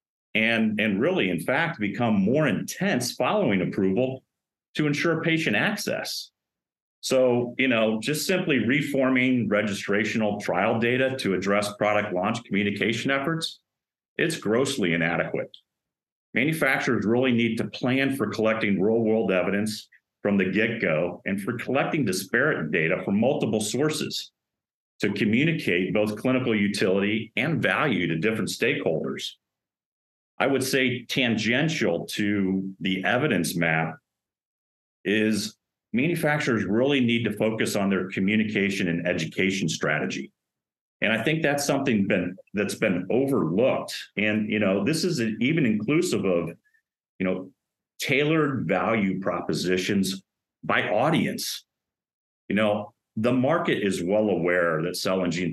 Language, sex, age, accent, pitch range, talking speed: English, male, 50-69, American, 100-130 Hz, 125 wpm